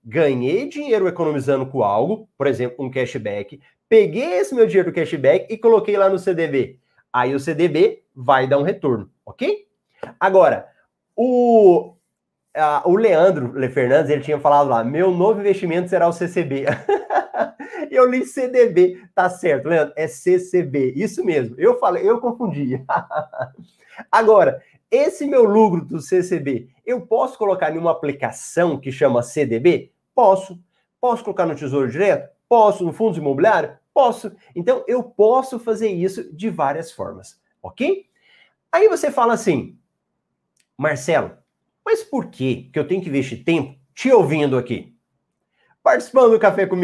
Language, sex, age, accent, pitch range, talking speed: Portuguese, male, 30-49, Brazilian, 150-240 Hz, 145 wpm